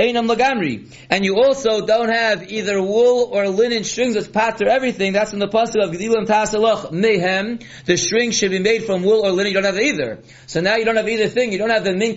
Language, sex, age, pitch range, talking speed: English, male, 30-49, 190-225 Hz, 235 wpm